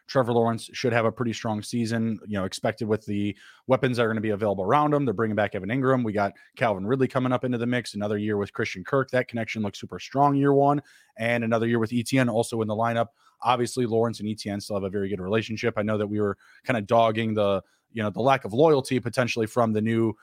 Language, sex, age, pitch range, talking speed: English, male, 20-39, 110-130 Hz, 255 wpm